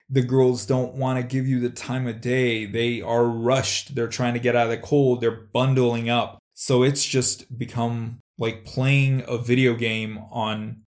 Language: English